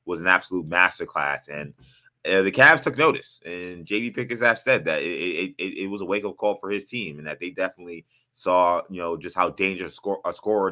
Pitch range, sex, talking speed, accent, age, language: 90-115 Hz, male, 220 wpm, American, 20-39, English